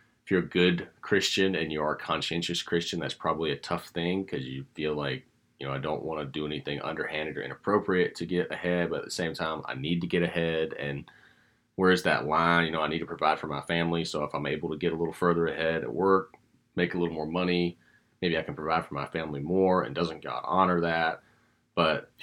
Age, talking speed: 30-49, 240 wpm